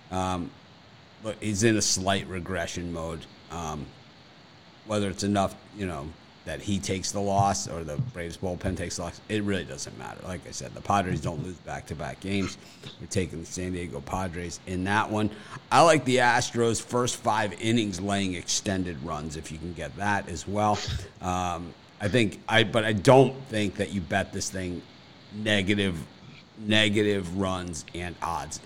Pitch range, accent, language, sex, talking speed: 90-105 Hz, American, English, male, 180 wpm